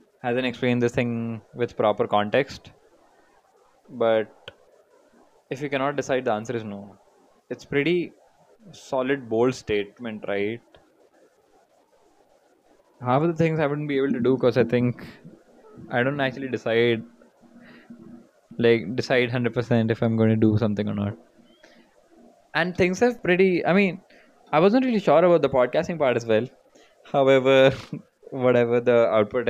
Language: English